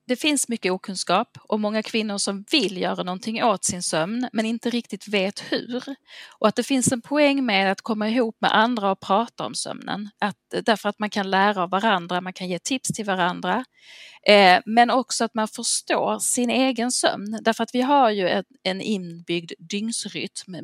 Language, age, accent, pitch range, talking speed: Swedish, 40-59, native, 175-230 Hz, 185 wpm